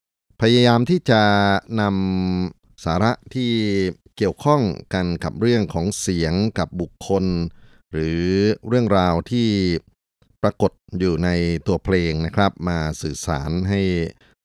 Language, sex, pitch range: Thai, male, 80-100 Hz